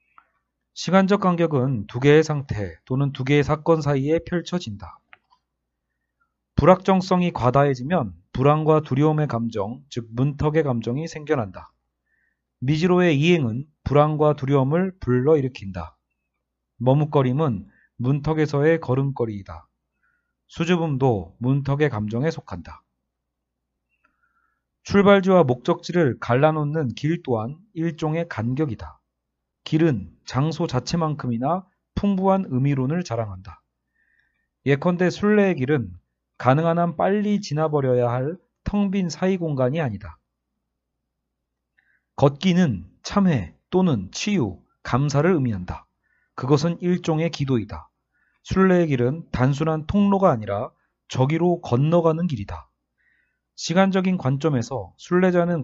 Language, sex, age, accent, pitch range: Korean, male, 40-59, native, 115-170 Hz